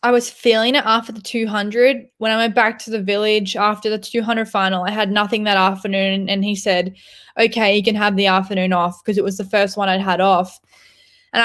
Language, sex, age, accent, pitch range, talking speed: English, female, 10-29, Australian, 200-235 Hz, 225 wpm